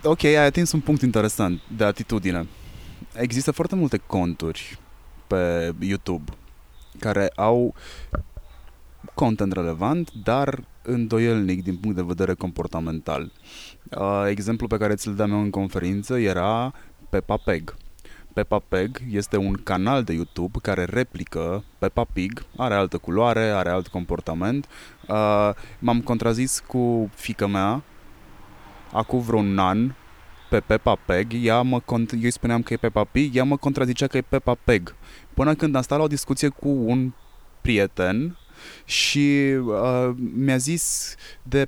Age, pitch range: 20-39, 95-130 Hz